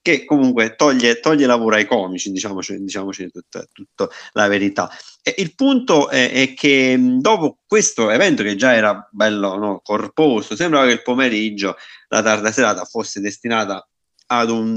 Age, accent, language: 30-49, native, Italian